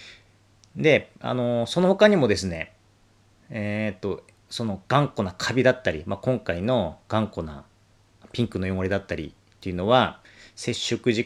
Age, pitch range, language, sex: 40-59, 100-140 Hz, Japanese, male